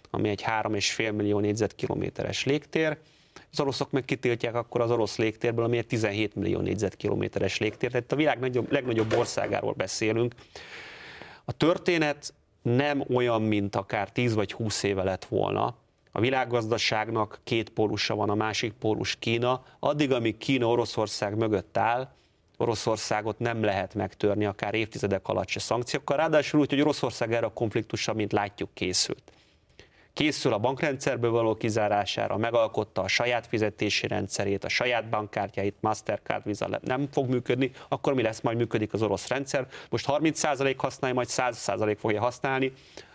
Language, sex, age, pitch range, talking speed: Hungarian, male, 30-49, 105-130 Hz, 145 wpm